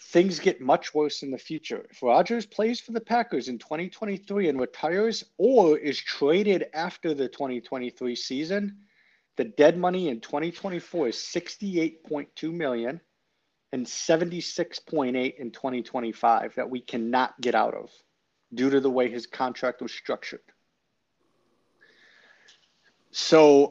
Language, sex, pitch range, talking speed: English, male, 125-175 Hz, 125 wpm